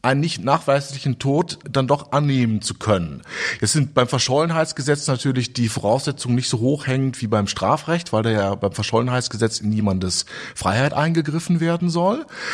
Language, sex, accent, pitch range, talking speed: German, male, German, 115-165 Hz, 160 wpm